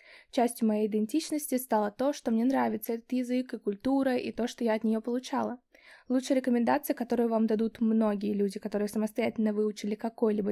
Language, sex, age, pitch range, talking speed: Russian, female, 20-39, 220-265 Hz, 170 wpm